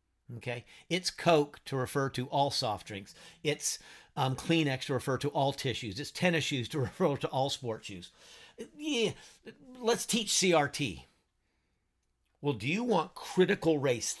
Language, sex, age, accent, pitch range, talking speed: English, male, 50-69, American, 115-165 Hz, 150 wpm